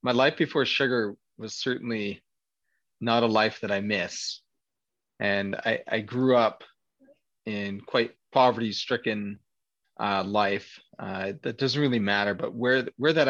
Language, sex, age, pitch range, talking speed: English, male, 30-49, 105-125 Hz, 140 wpm